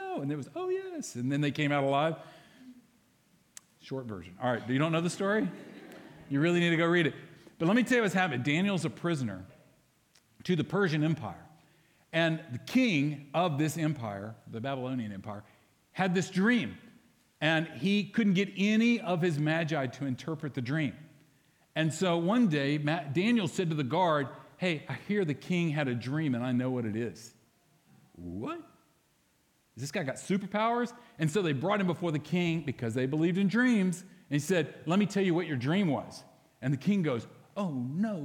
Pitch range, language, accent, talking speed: 135-195 Hz, English, American, 195 wpm